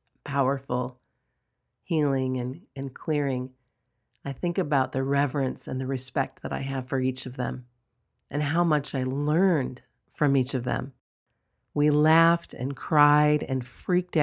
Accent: American